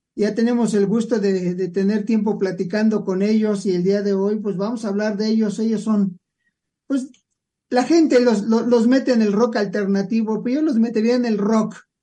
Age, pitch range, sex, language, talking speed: 50-69, 200-225 Hz, male, English, 215 wpm